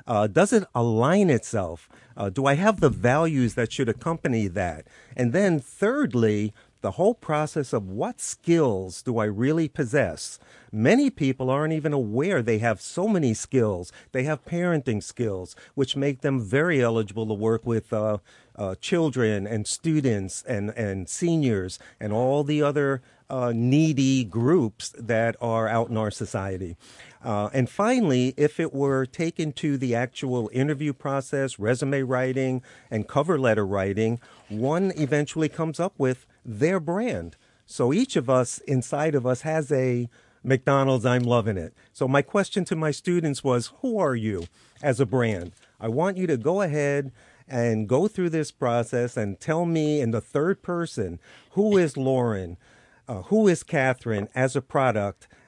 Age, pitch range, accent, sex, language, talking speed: 50-69, 115-150 Hz, American, male, English, 160 wpm